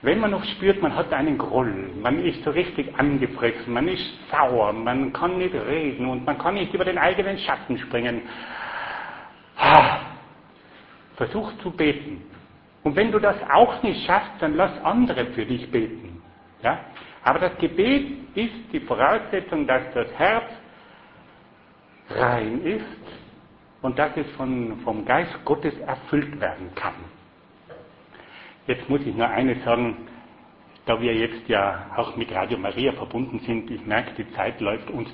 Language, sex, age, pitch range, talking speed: German, male, 70-89, 120-180 Hz, 150 wpm